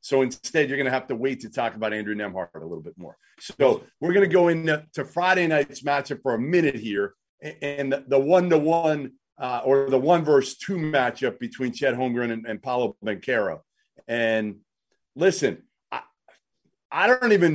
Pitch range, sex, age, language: 120-165 Hz, male, 40-59, English